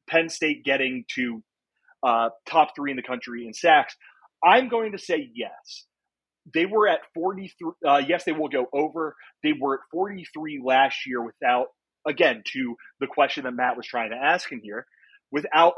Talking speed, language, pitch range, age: 180 wpm, English, 120-160 Hz, 30-49